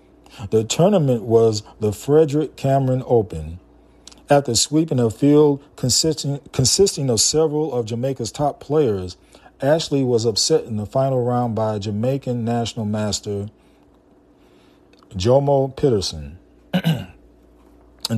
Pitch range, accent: 105-135 Hz, American